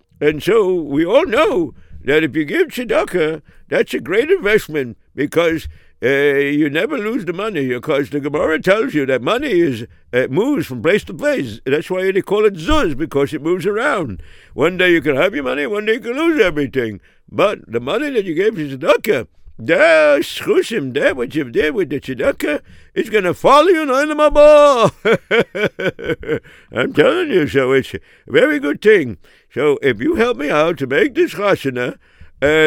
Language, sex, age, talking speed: English, male, 60-79, 185 wpm